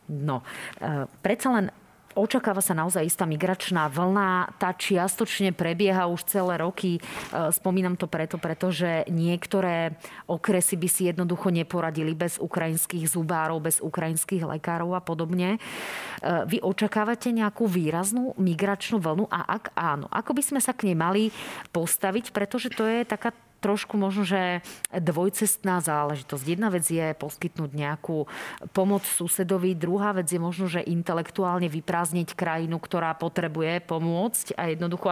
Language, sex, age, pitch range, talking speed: Slovak, female, 30-49, 165-195 Hz, 140 wpm